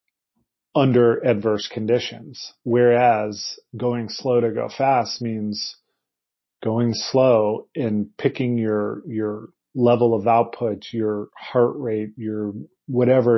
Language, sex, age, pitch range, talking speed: English, male, 40-59, 110-125 Hz, 110 wpm